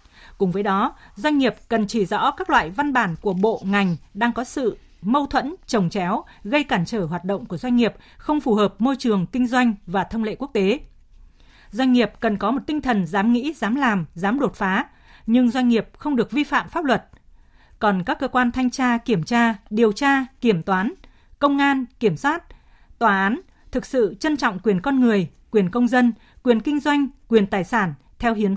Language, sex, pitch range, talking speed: Vietnamese, female, 200-255 Hz, 210 wpm